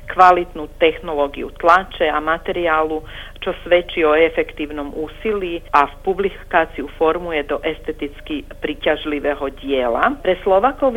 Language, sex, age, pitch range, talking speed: Croatian, female, 40-59, 155-195 Hz, 100 wpm